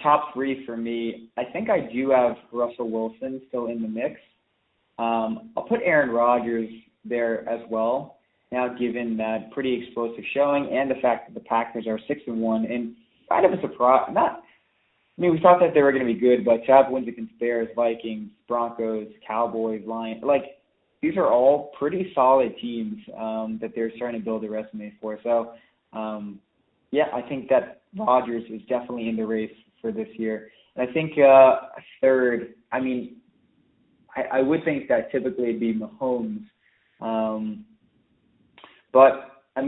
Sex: male